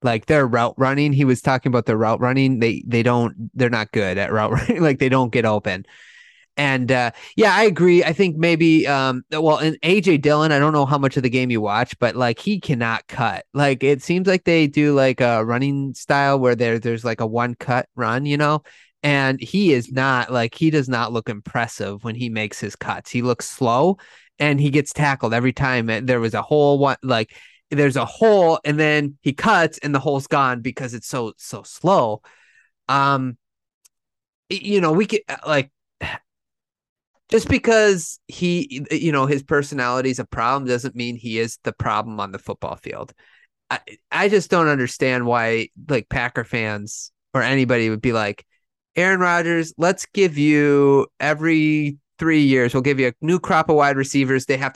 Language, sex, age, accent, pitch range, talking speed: English, male, 20-39, American, 120-150 Hz, 195 wpm